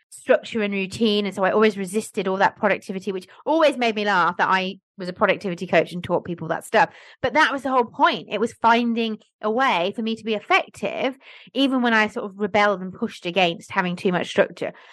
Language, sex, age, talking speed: English, female, 30-49, 225 wpm